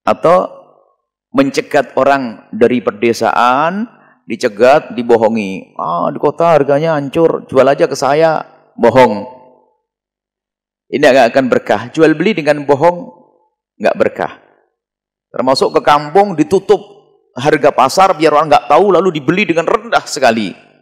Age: 40-59